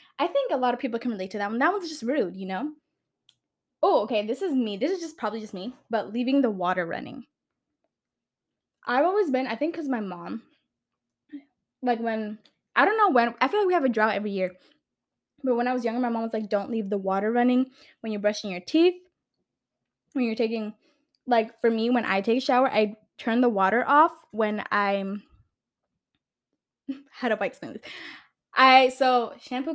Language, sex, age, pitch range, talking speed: English, female, 10-29, 210-280 Hz, 200 wpm